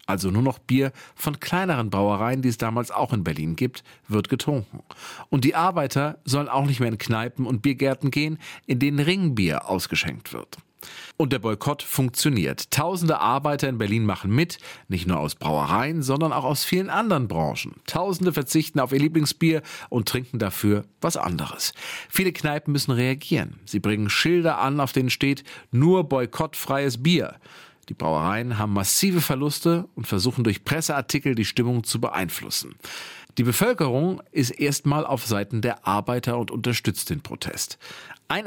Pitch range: 115-150 Hz